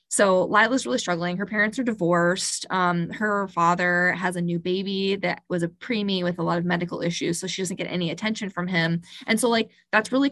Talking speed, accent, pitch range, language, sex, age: 220 wpm, American, 170-205 Hz, English, female, 20-39